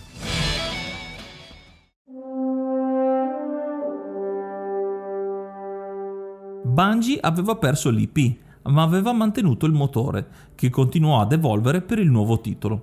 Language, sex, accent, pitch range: Italian, male, native, 120-180 Hz